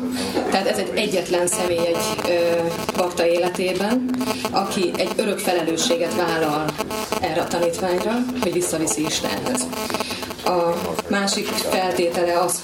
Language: Hungarian